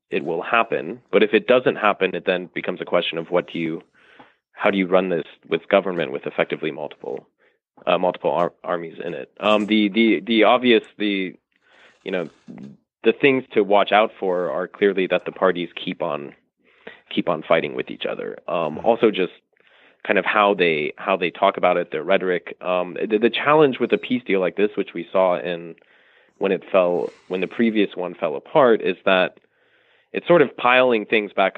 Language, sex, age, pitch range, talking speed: English, male, 30-49, 90-115 Hz, 195 wpm